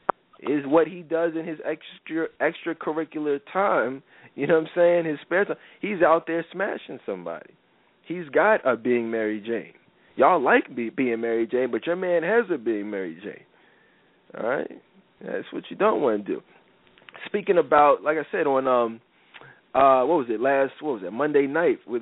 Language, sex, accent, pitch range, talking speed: English, male, American, 115-165 Hz, 190 wpm